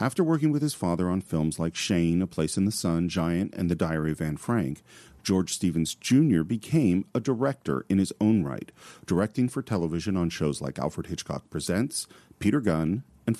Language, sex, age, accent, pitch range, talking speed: English, male, 40-59, American, 80-115 Hz, 195 wpm